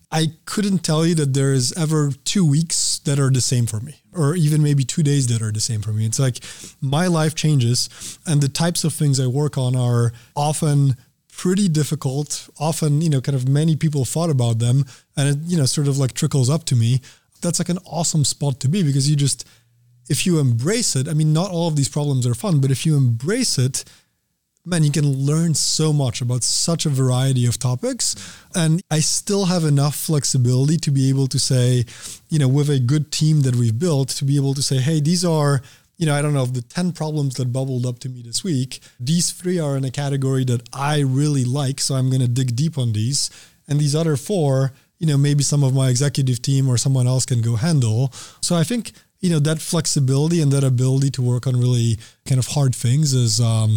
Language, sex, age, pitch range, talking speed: English, male, 20-39, 125-155 Hz, 230 wpm